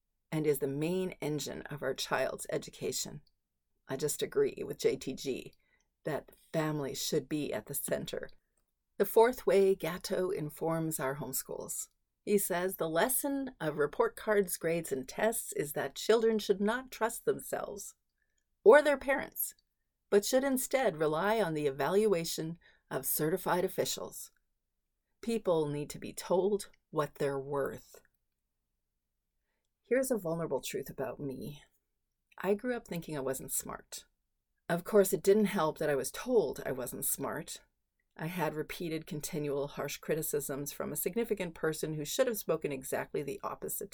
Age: 40-59